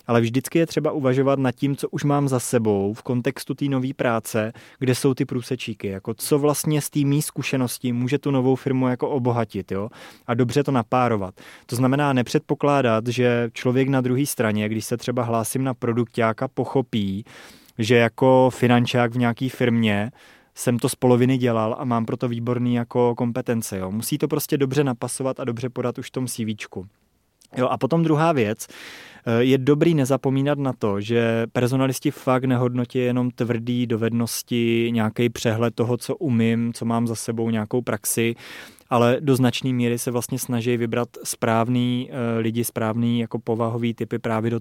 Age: 20-39